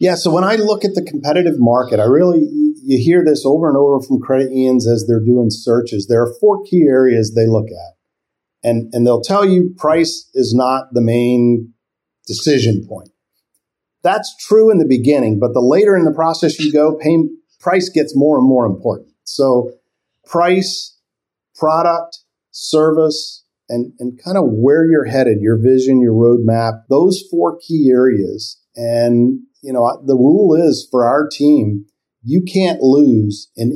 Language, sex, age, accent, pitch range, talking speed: English, male, 50-69, American, 120-155 Hz, 170 wpm